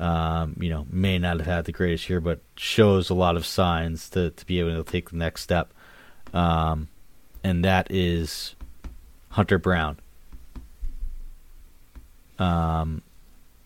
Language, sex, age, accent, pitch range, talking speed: English, male, 30-49, American, 85-95 Hz, 140 wpm